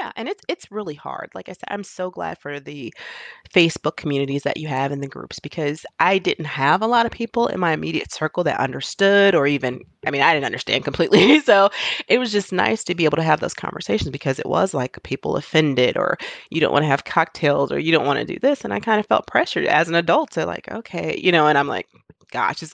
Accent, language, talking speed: American, English, 250 wpm